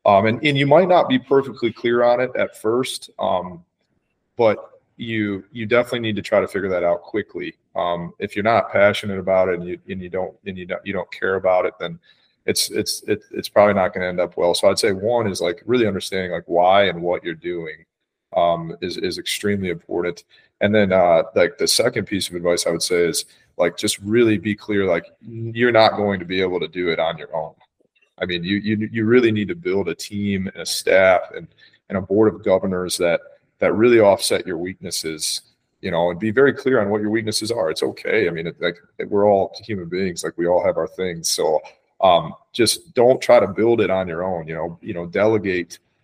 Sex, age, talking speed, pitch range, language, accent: male, 30-49, 230 wpm, 90-115 Hz, English, American